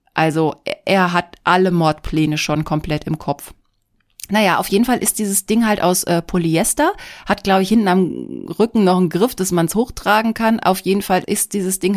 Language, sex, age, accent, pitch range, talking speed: German, female, 30-49, German, 165-210 Hz, 200 wpm